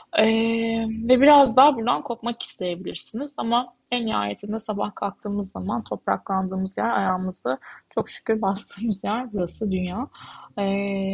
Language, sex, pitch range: Turkish, female, 200-240 Hz